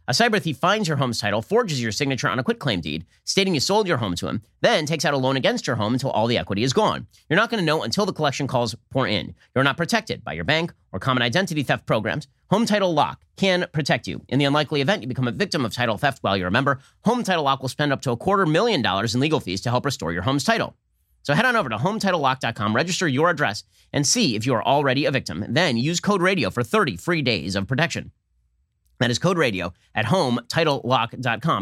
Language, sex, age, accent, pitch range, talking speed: English, male, 30-49, American, 105-150 Hz, 250 wpm